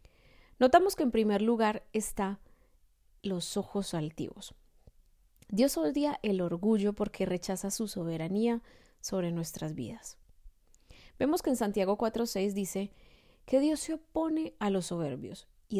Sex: female